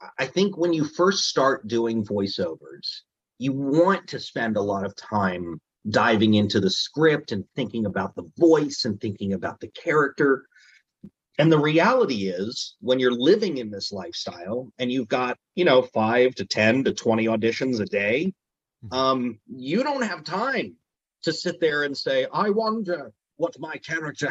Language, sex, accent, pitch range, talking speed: English, male, American, 115-175 Hz, 170 wpm